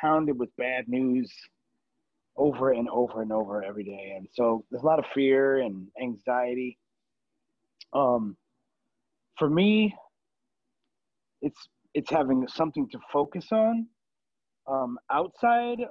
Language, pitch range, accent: English, 130-165 Hz, American